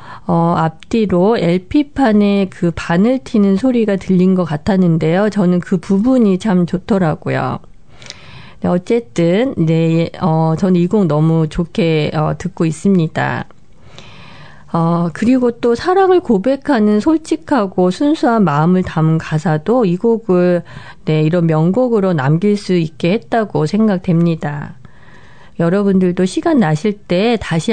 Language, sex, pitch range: Korean, female, 165-215 Hz